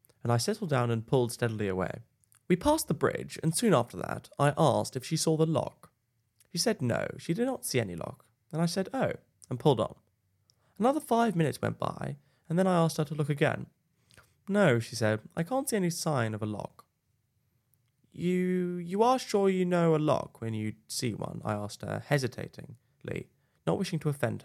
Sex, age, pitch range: male, 10-29, 115-170 Hz